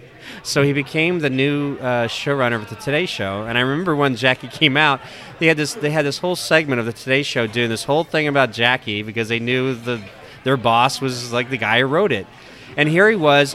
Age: 30-49